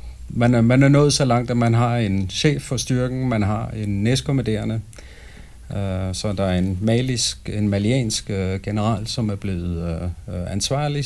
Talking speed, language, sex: 165 wpm, English, male